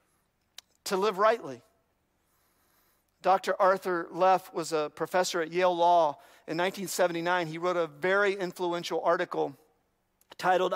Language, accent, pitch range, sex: English, American, 185-260 Hz, male